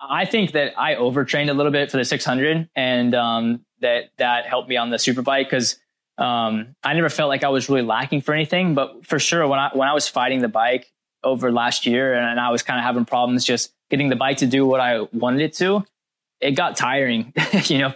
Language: English